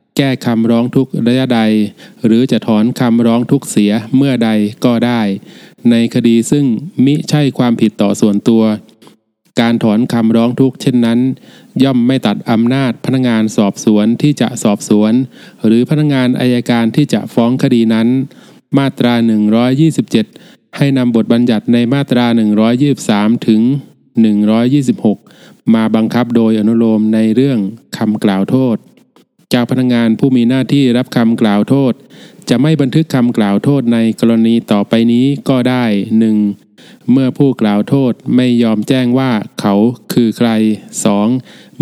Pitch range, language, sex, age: 110-130 Hz, Thai, male, 20-39